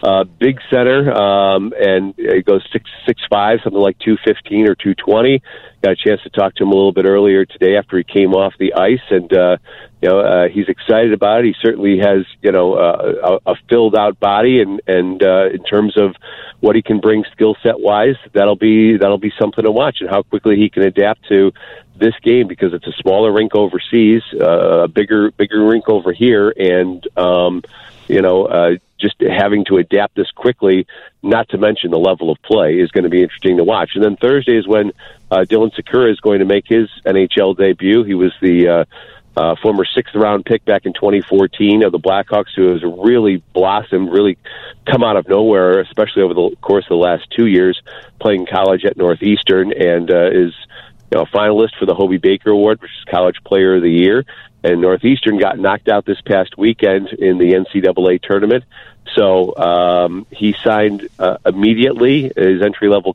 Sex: male